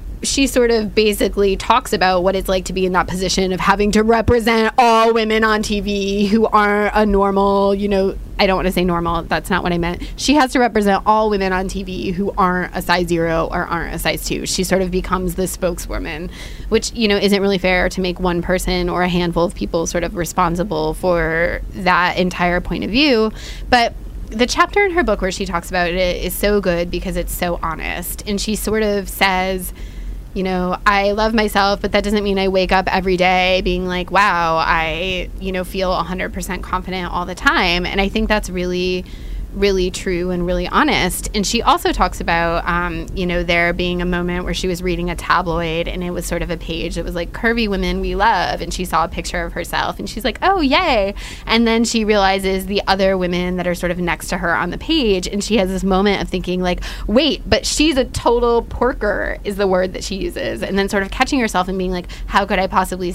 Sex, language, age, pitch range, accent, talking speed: female, English, 20-39, 180-205 Hz, American, 230 wpm